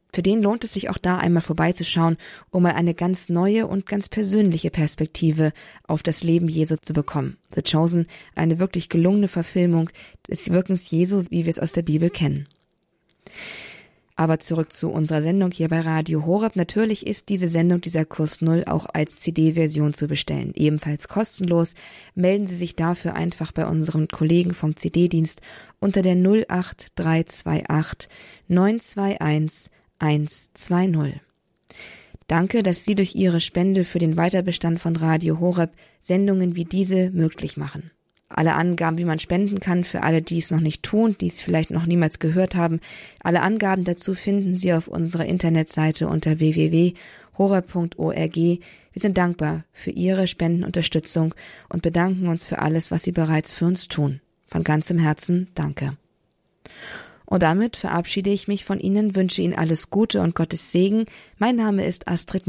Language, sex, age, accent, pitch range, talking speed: German, female, 20-39, German, 160-185 Hz, 155 wpm